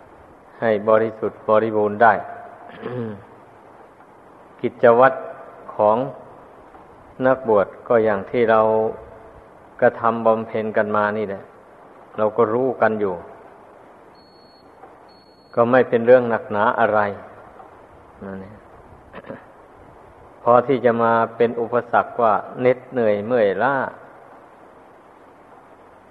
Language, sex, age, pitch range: Thai, male, 60-79, 110-125 Hz